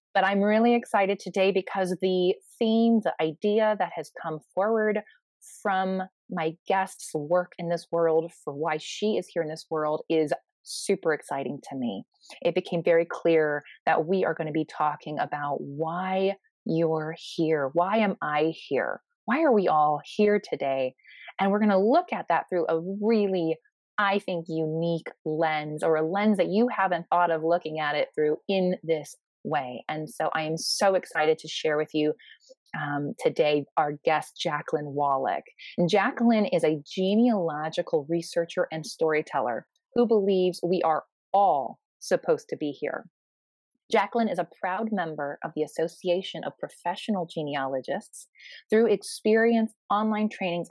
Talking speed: 160 wpm